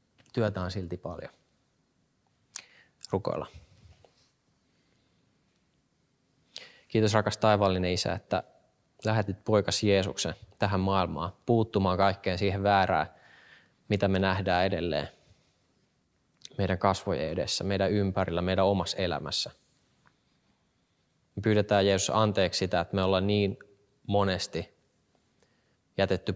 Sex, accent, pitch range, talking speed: male, native, 90-105 Hz, 95 wpm